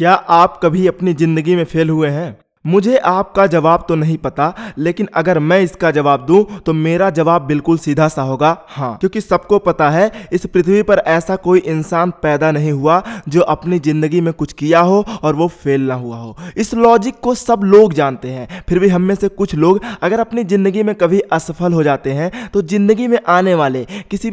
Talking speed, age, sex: 205 wpm, 20-39, male